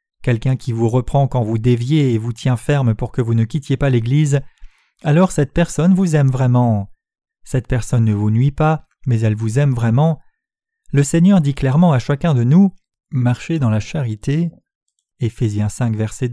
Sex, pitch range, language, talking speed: male, 120-160 Hz, French, 190 wpm